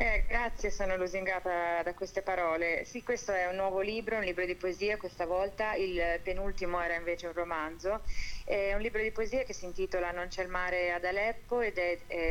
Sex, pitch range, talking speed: female, 170-195 Hz, 205 wpm